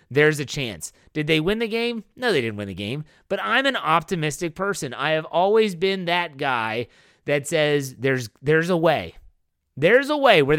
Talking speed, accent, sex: 200 wpm, American, male